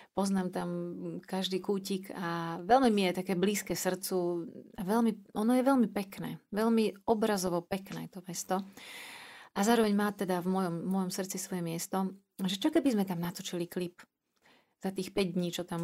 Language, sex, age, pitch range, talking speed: Slovak, female, 30-49, 175-200 Hz, 165 wpm